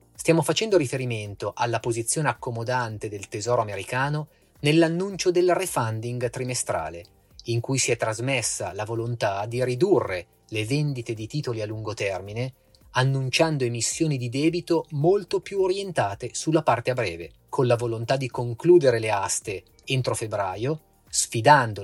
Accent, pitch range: native, 115-160 Hz